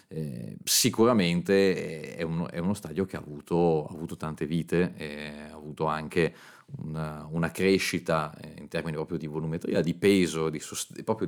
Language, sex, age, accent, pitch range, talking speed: Italian, male, 30-49, native, 75-90 Hz, 165 wpm